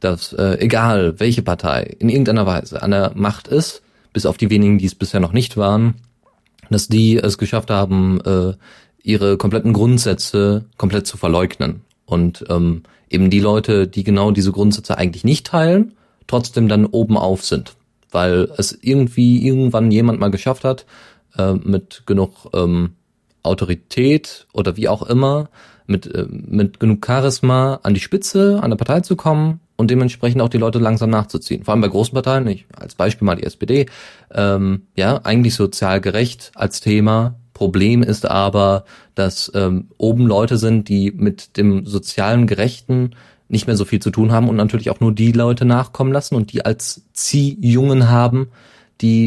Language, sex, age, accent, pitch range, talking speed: German, male, 30-49, German, 100-120 Hz, 170 wpm